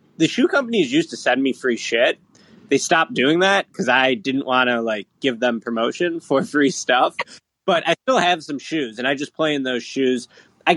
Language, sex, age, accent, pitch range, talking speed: English, male, 20-39, American, 125-180 Hz, 215 wpm